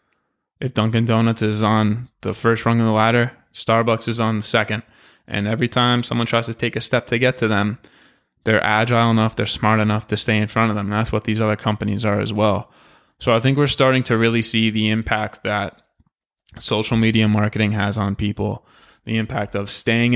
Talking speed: 210 wpm